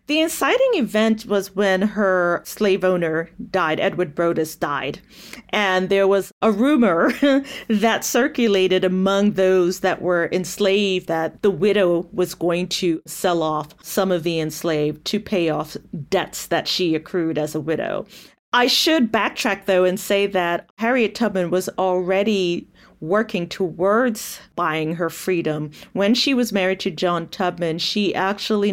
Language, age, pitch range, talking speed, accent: English, 40-59, 175-220 Hz, 150 wpm, American